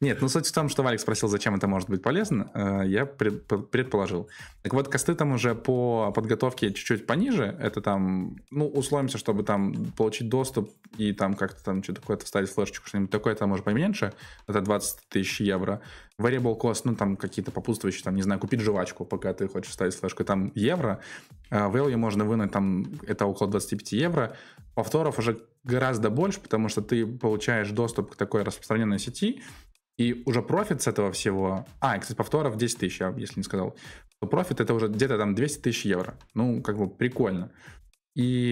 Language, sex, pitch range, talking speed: Russian, male, 100-125 Hz, 180 wpm